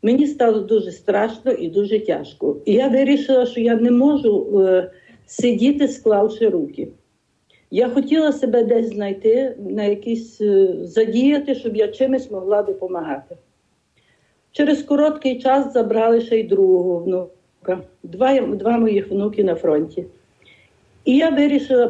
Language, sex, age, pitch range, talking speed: Ukrainian, female, 60-79, 215-270 Hz, 130 wpm